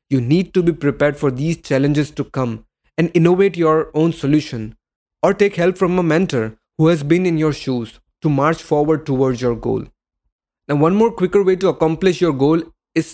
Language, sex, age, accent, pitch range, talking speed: English, male, 20-39, Indian, 140-175 Hz, 195 wpm